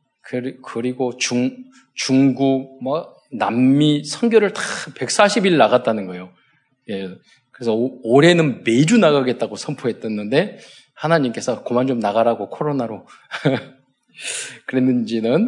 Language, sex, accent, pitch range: Korean, male, native, 120-180 Hz